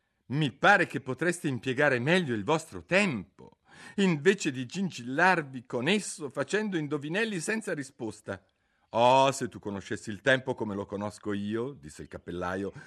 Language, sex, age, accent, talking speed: Italian, male, 50-69, native, 145 wpm